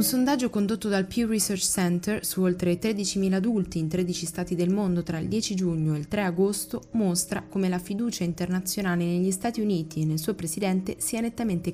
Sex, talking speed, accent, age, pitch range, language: female, 195 wpm, native, 20-39, 165-190 Hz, Italian